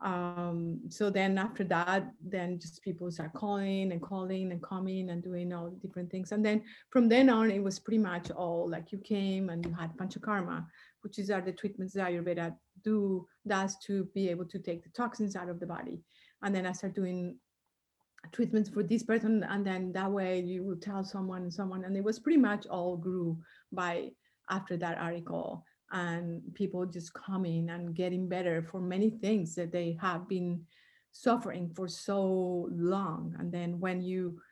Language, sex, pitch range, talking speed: English, female, 175-200 Hz, 190 wpm